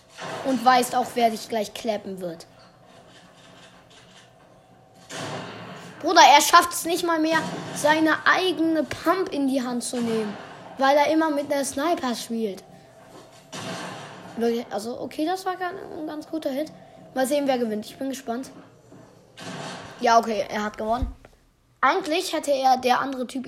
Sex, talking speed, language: female, 145 wpm, German